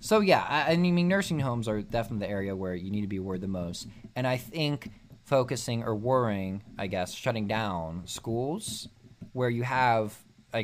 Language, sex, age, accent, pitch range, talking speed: English, male, 20-39, American, 100-130 Hz, 190 wpm